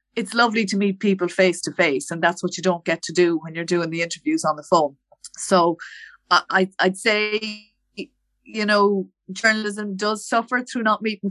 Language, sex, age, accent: English, female, 30-49, Irish